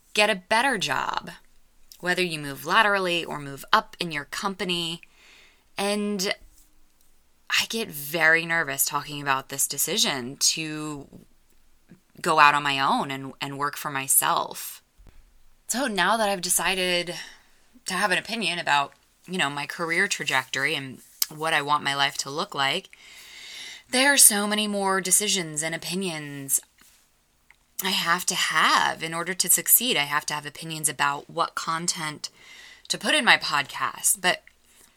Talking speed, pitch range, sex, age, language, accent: 150 wpm, 140-185 Hz, female, 20-39, English, American